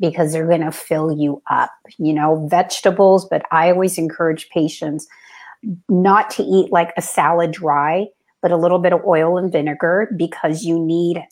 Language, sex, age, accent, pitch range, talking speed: English, female, 50-69, American, 155-190 Hz, 175 wpm